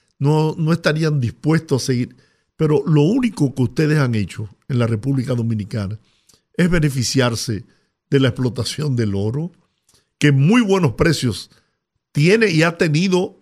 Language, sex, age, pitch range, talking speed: Spanish, male, 50-69, 125-170 Hz, 145 wpm